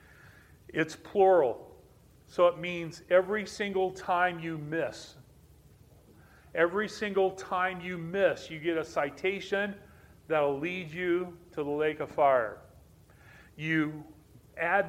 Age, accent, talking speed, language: 40-59, American, 120 wpm, English